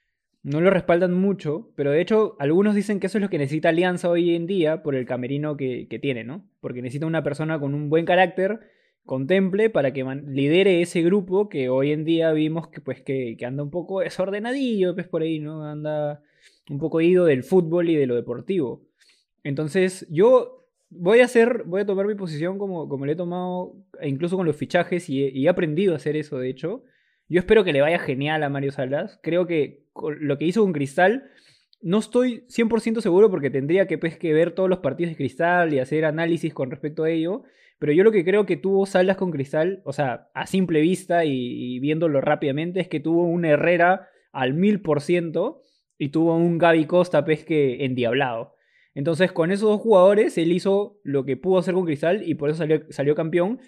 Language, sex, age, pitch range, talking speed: Spanish, male, 20-39, 150-190 Hz, 205 wpm